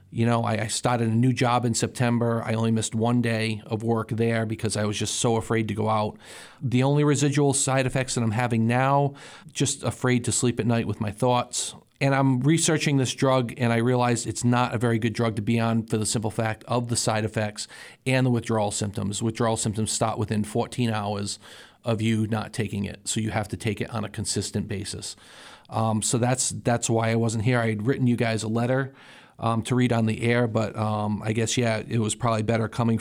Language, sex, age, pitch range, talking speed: English, male, 40-59, 110-125 Hz, 225 wpm